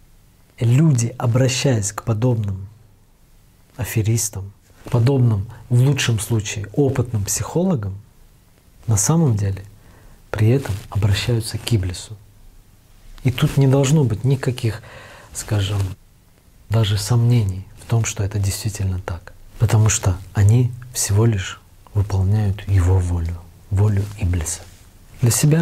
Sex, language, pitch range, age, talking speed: male, Russian, 100-120 Hz, 40-59, 110 wpm